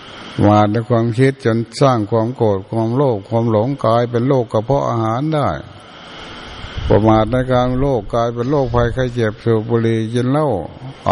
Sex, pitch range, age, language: male, 100-125 Hz, 60-79, Thai